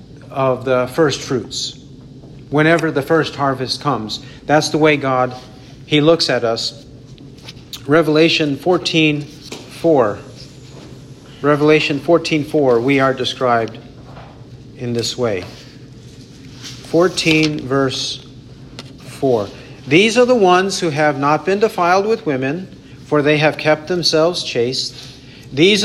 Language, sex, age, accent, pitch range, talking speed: English, male, 50-69, American, 130-160 Hz, 115 wpm